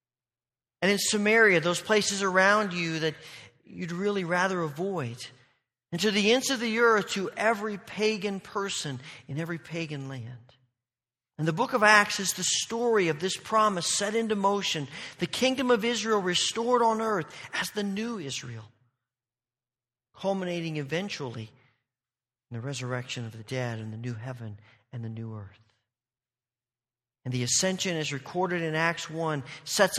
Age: 40-59